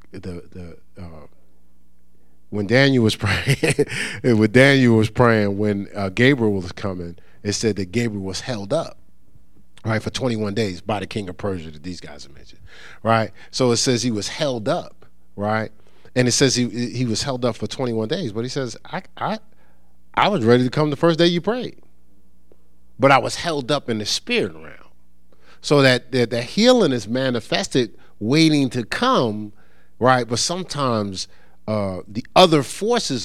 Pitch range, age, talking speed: 95-125 Hz, 30-49, 180 wpm